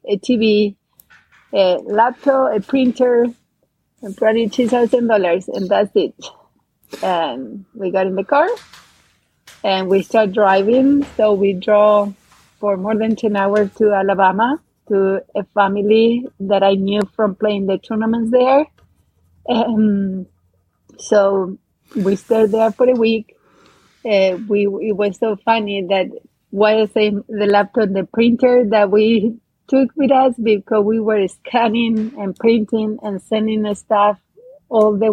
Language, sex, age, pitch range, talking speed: English, female, 30-49, 195-230 Hz, 140 wpm